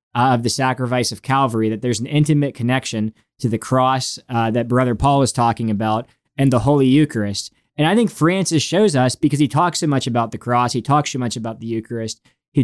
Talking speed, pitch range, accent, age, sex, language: 225 wpm, 115-140 Hz, American, 20-39, male, English